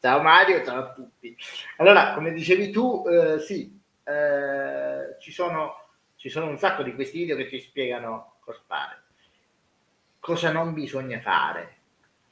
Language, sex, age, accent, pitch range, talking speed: Italian, male, 30-49, native, 125-150 Hz, 145 wpm